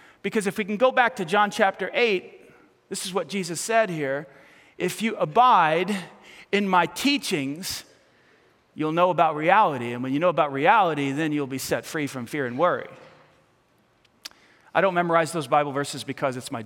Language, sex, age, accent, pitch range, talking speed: English, male, 40-59, American, 145-220 Hz, 180 wpm